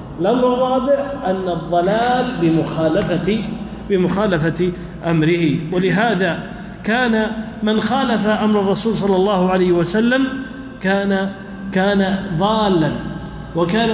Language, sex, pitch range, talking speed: Arabic, male, 180-225 Hz, 90 wpm